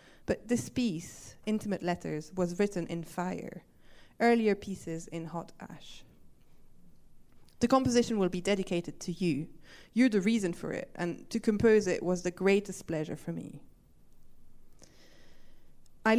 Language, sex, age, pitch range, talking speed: English, female, 20-39, 170-220 Hz, 135 wpm